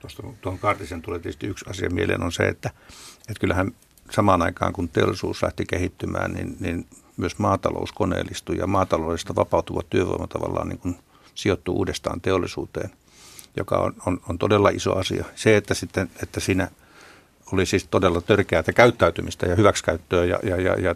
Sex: male